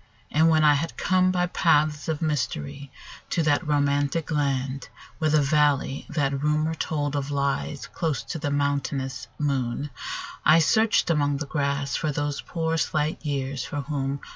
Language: English